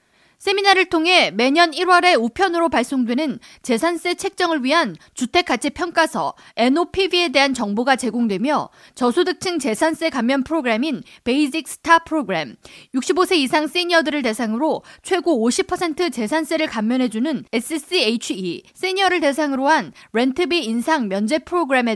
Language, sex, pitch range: Korean, female, 245-340 Hz